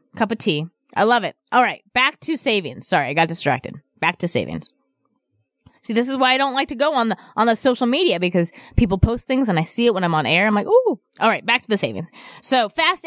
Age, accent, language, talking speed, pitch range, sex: 20-39, American, English, 255 wpm, 185-270 Hz, female